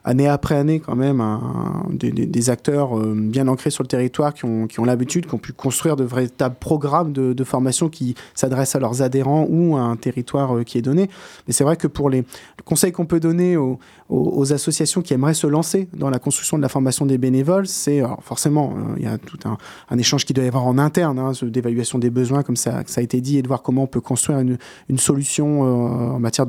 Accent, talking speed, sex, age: French, 250 wpm, male, 20-39